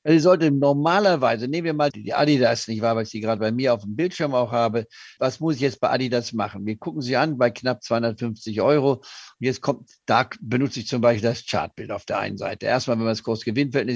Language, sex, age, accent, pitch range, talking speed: German, male, 50-69, German, 110-135 Hz, 235 wpm